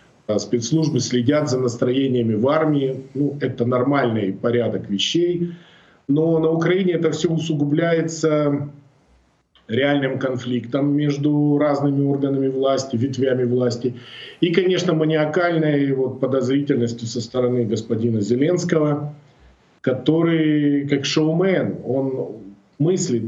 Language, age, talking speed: Russian, 40-59, 100 wpm